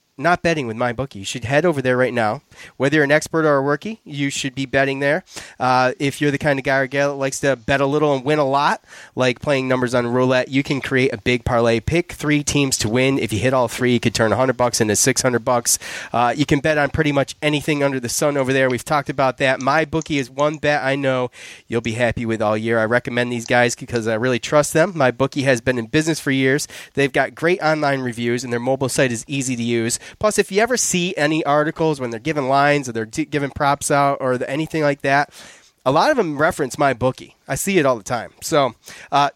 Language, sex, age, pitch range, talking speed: English, male, 30-49, 130-155 Hz, 255 wpm